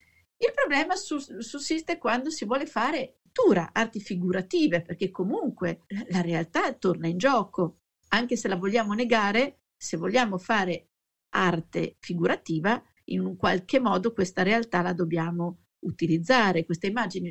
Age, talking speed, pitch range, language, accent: 50-69, 135 wpm, 180-280 Hz, Italian, native